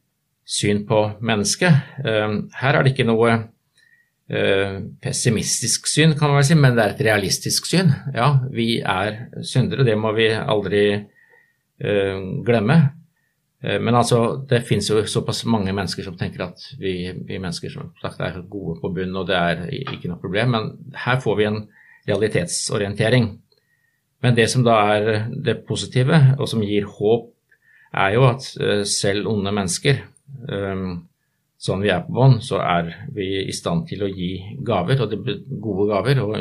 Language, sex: English, male